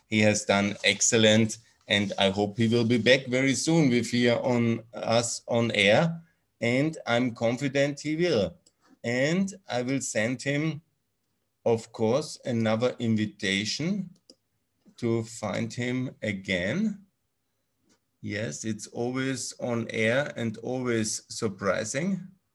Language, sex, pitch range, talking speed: German, male, 100-125 Hz, 120 wpm